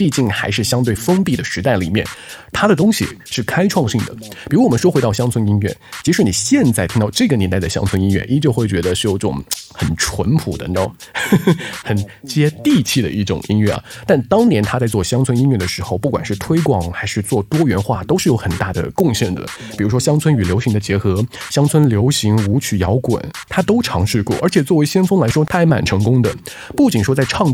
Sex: male